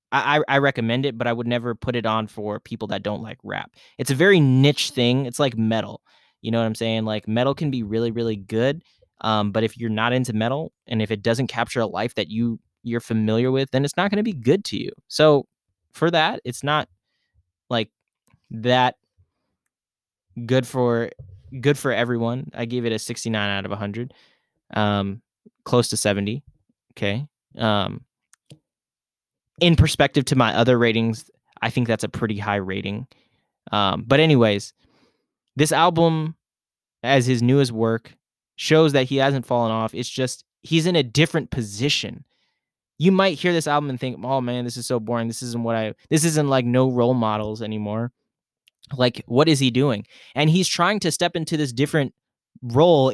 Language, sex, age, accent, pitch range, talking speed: English, male, 10-29, American, 110-140 Hz, 185 wpm